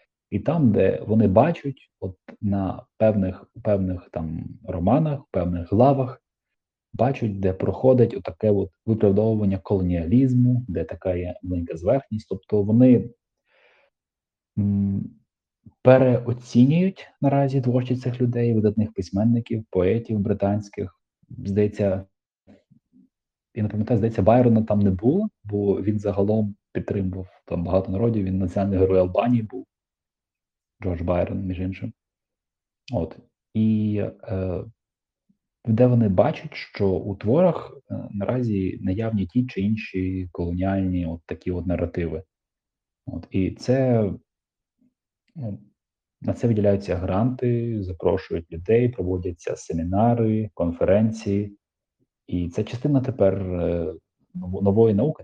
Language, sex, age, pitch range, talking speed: Ukrainian, male, 30-49, 95-115 Hz, 105 wpm